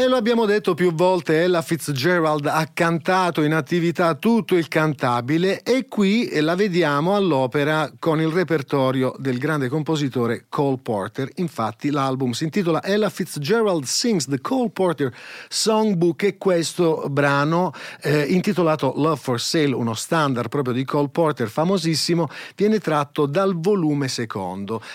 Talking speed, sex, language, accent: 140 wpm, male, Italian, native